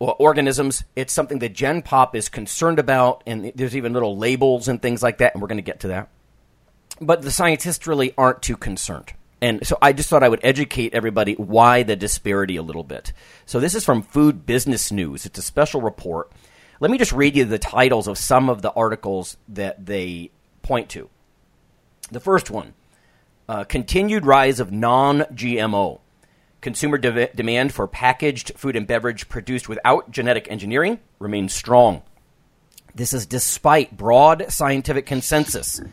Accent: American